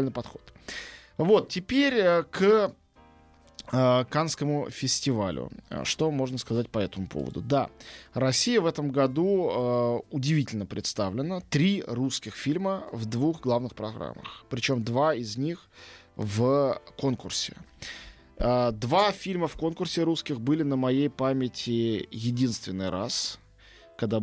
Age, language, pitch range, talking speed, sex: 20-39, Russian, 110-145 Hz, 110 wpm, male